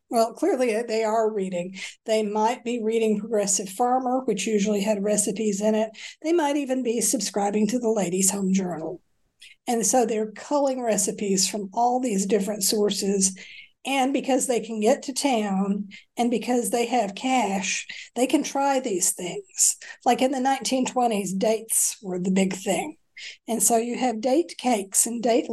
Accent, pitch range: American, 205-250 Hz